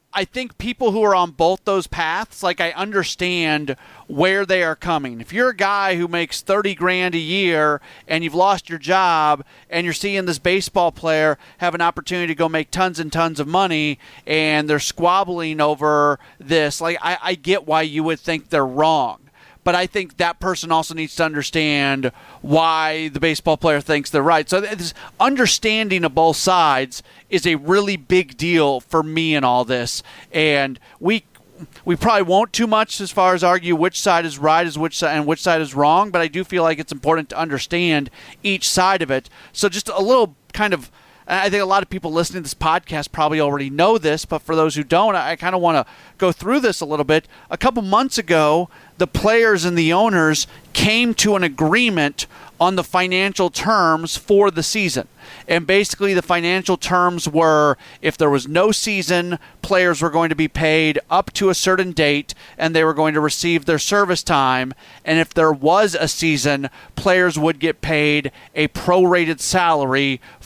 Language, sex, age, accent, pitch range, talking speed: English, male, 30-49, American, 155-185 Hz, 195 wpm